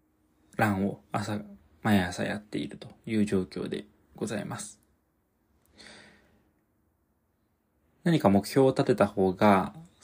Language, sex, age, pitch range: Japanese, male, 20-39, 95-110 Hz